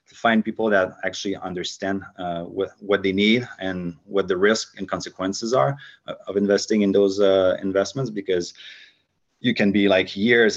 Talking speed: 170 wpm